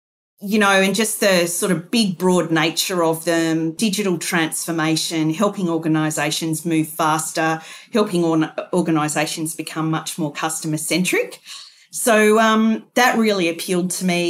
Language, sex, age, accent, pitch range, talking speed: English, female, 40-59, Australian, 160-190 Hz, 135 wpm